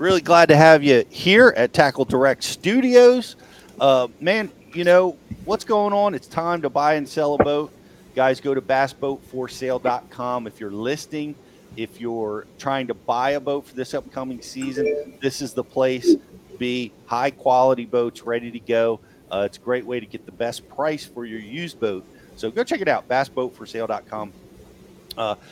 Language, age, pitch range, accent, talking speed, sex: English, 40-59, 125-160 Hz, American, 180 wpm, male